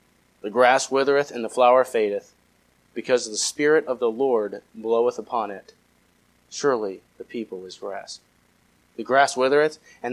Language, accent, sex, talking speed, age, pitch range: English, American, male, 150 wpm, 30-49, 105-150 Hz